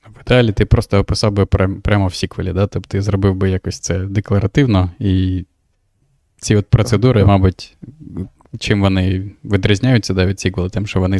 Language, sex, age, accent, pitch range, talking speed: Ukrainian, male, 20-39, native, 95-105 Hz, 155 wpm